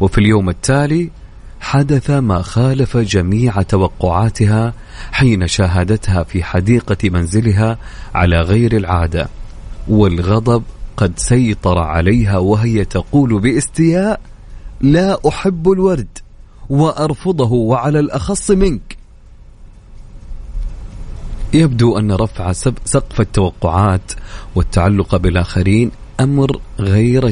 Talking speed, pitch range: 85 wpm, 100-135 Hz